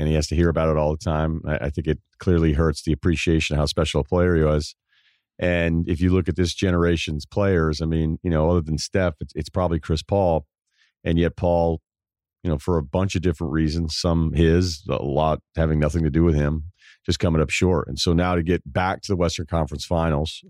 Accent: American